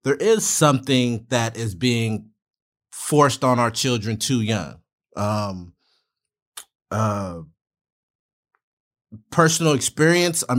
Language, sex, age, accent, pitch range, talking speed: English, male, 30-49, American, 110-130 Hz, 95 wpm